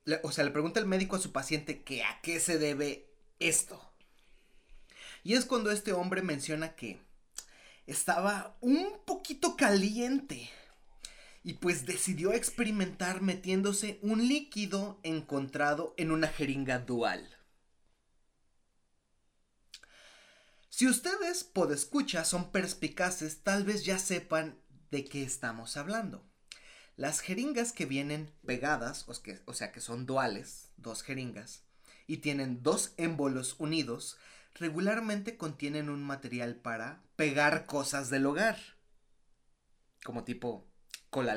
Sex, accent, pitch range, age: male, Mexican, 140-205 Hz, 30-49